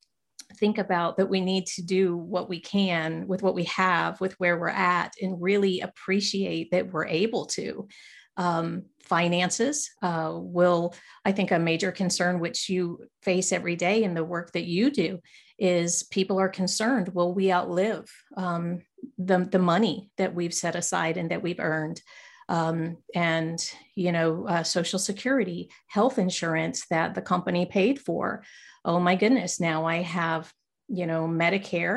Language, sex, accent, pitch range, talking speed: English, female, American, 165-195 Hz, 165 wpm